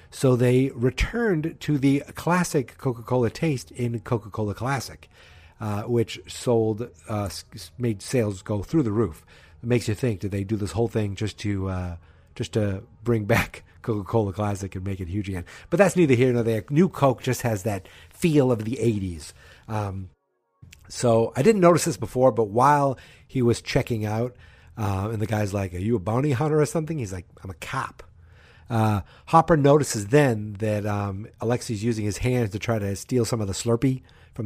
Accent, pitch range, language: American, 100-130 Hz, English